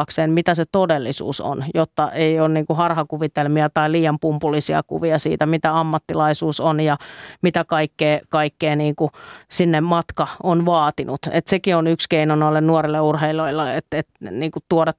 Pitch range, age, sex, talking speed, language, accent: 155-165 Hz, 30-49, female, 135 wpm, Finnish, native